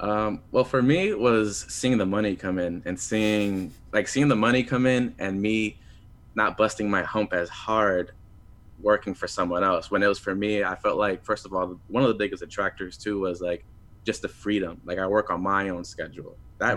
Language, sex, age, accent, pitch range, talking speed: English, male, 20-39, American, 95-105 Hz, 220 wpm